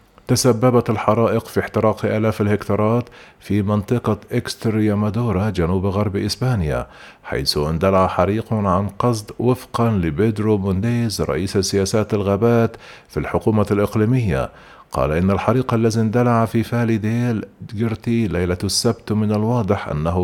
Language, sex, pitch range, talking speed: Arabic, male, 100-115 Hz, 120 wpm